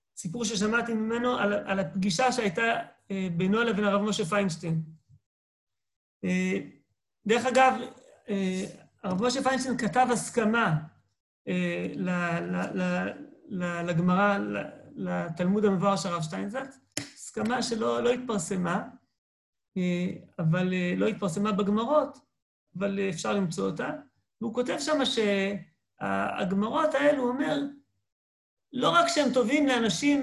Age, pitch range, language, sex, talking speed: 40-59, 175-250 Hz, Hebrew, male, 95 wpm